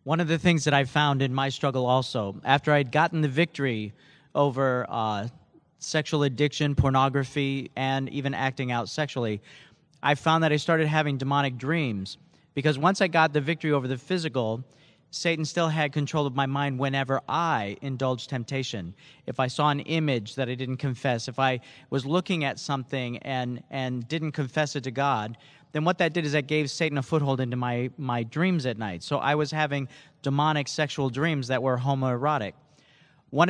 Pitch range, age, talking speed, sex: 130-155 Hz, 40-59, 185 wpm, male